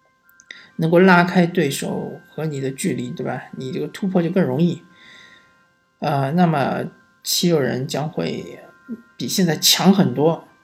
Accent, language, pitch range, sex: native, Chinese, 175-215 Hz, male